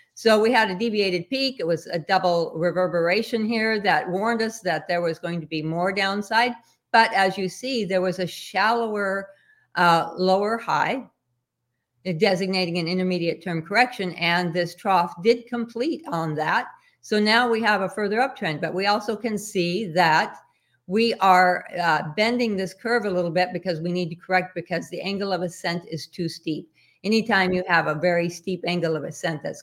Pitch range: 170-210 Hz